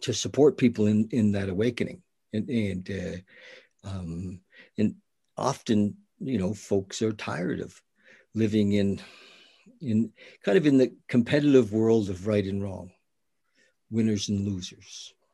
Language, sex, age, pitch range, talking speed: English, male, 60-79, 100-120 Hz, 135 wpm